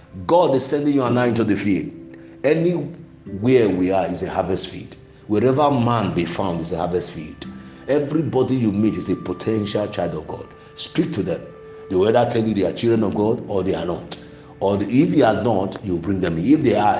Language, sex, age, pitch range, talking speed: English, male, 50-69, 95-130 Hz, 210 wpm